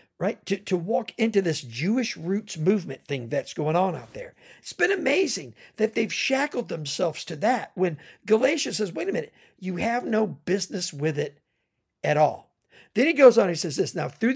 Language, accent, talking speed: English, American, 195 wpm